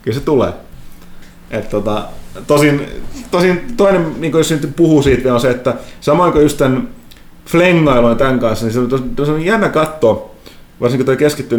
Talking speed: 155 wpm